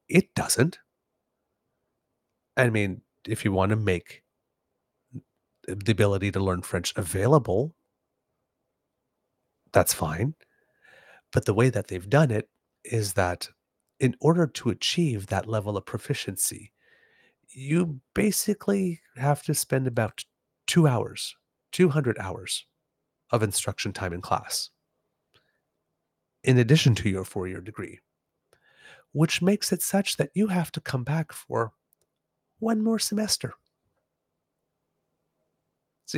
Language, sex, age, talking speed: English, male, 30-49, 115 wpm